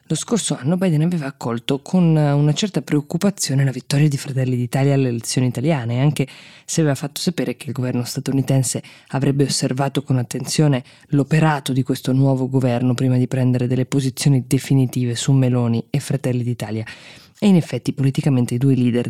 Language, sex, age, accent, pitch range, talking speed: Italian, female, 20-39, native, 130-145 Hz, 170 wpm